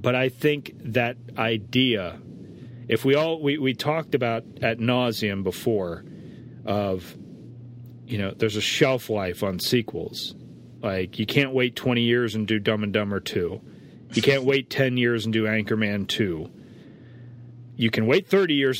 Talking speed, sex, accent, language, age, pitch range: 160 wpm, male, American, English, 40-59, 110-135 Hz